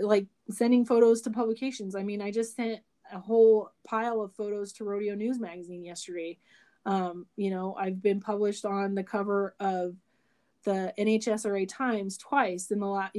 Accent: American